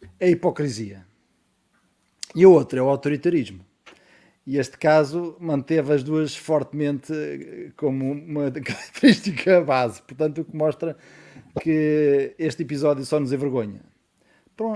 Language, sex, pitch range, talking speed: Portuguese, male, 125-150 Hz, 120 wpm